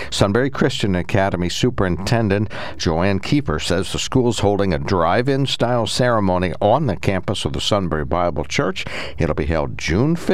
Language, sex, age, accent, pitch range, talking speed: English, male, 60-79, American, 80-105 Hz, 165 wpm